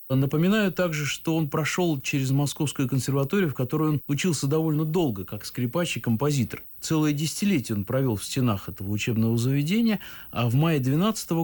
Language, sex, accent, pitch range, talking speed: Russian, male, native, 120-155 Hz, 165 wpm